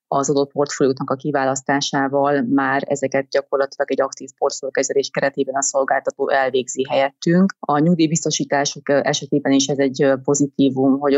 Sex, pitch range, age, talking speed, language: female, 135-150 Hz, 30-49, 125 wpm, Hungarian